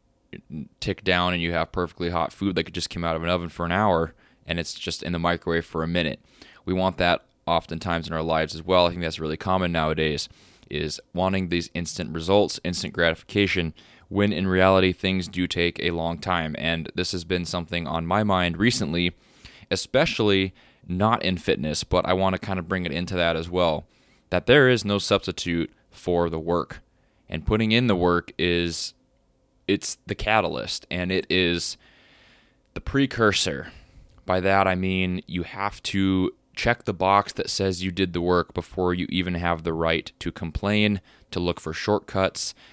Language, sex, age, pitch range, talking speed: English, male, 20-39, 85-95 Hz, 190 wpm